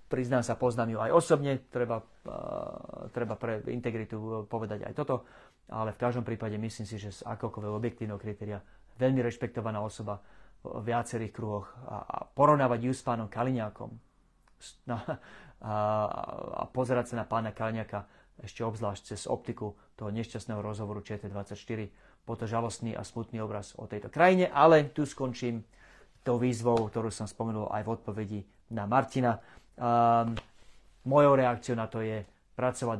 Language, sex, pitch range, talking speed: Slovak, male, 105-120 Hz, 145 wpm